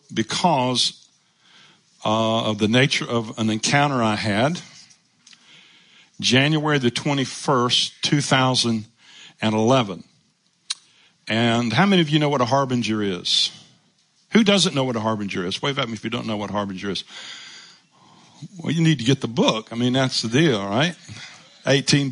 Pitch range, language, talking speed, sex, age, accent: 115-160 Hz, English, 150 wpm, male, 50-69, American